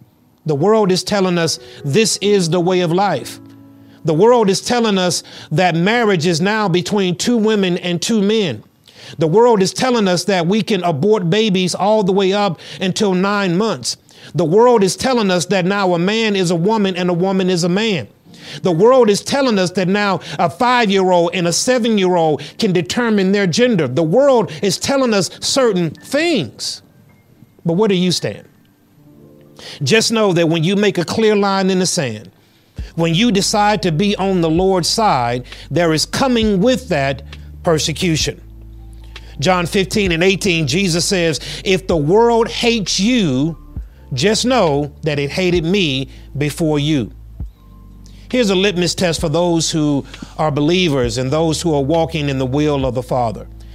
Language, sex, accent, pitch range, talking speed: English, male, American, 150-205 Hz, 175 wpm